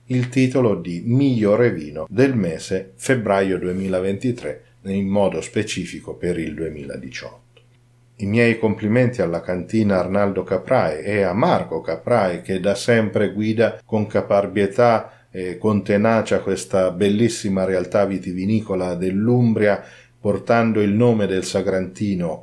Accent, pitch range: native, 95-110 Hz